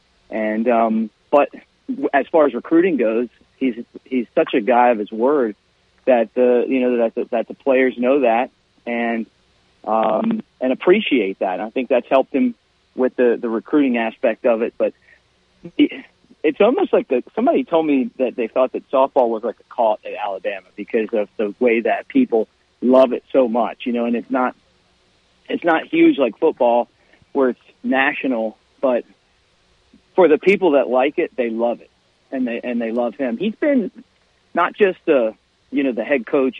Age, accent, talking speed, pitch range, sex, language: 40-59, American, 185 wpm, 110-135 Hz, male, English